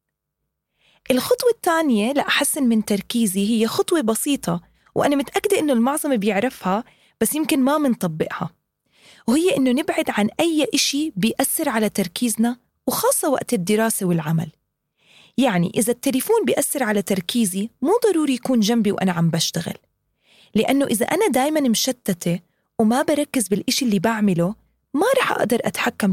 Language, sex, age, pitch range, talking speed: English, female, 20-39, 205-280 Hz, 130 wpm